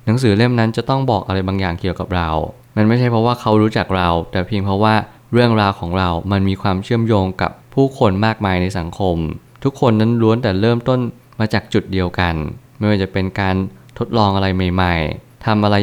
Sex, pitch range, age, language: male, 95-115 Hz, 20-39, Thai